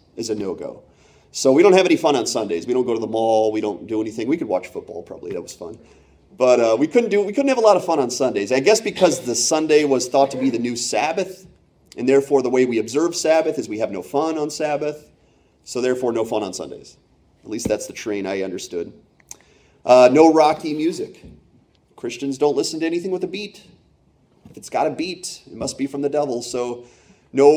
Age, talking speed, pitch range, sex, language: 30-49, 235 wpm, 125-175 Hz, male, English